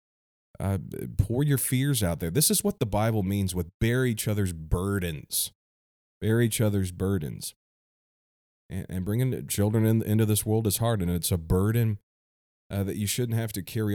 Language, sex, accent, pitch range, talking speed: English, male, American, 85-110 Hz, 180 wpm